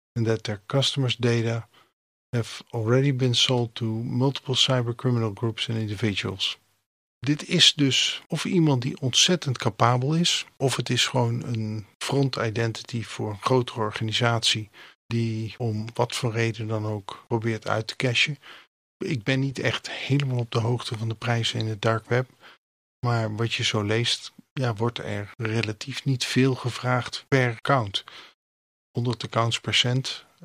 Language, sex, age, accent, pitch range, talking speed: Dutch, male, 50-69, Dutch, 115-130 Hz, 150 wpm